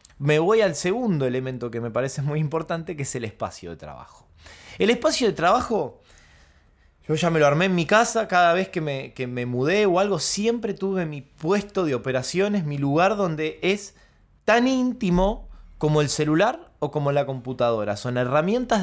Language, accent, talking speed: Spanish, Argentinian, 180 wpm